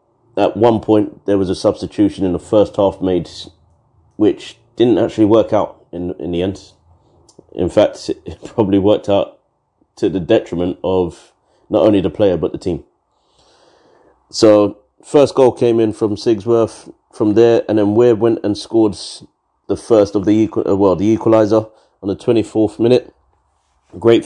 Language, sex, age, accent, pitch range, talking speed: English, male, 30-49, British, 95-110 Hz, 165 wpm